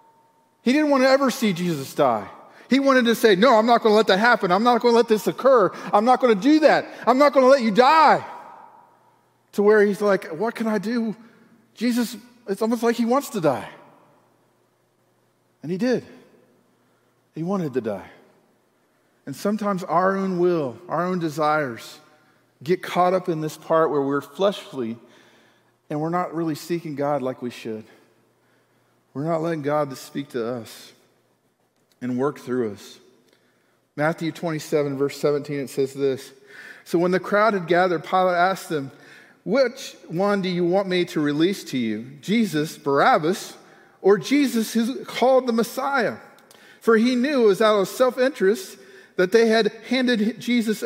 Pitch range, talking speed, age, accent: 155-235 Hz, 175 wpm, 40-59, American